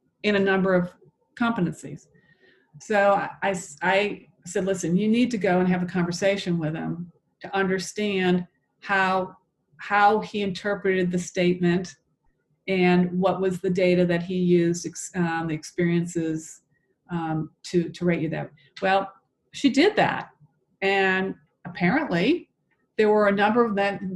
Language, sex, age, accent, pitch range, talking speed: English, female, 40-59, American, 175-215 Hz, 140 wpm